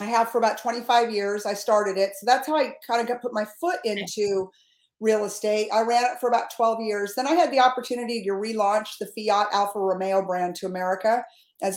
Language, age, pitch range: English, 50-69, 205-240 Hz